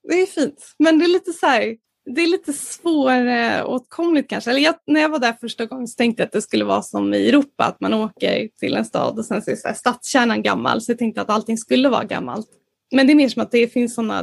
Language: Swedish